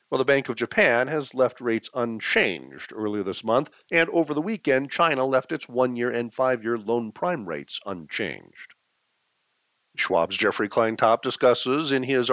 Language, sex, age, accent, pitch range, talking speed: English, male, 50-69, American, 110-140 Hz, 155 wpm